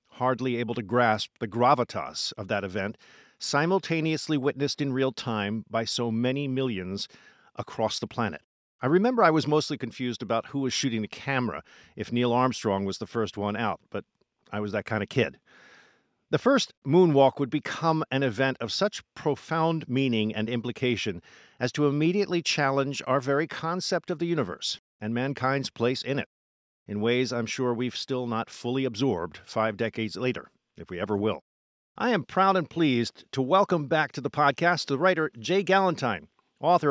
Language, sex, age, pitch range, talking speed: English, male, 50-69, 115-150 Hz, 175 wpm